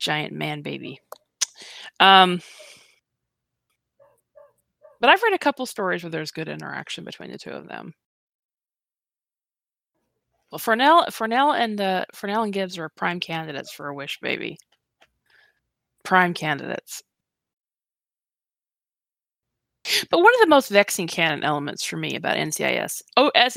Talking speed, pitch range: 120 wpm, 180-240 Hz